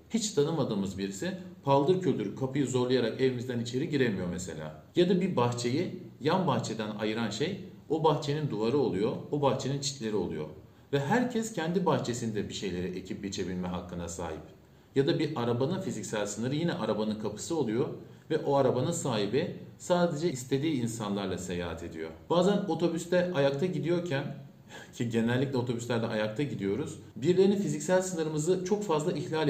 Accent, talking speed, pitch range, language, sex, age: native, 145 wpm, 115-170 Hz, Turkish, male, 50-69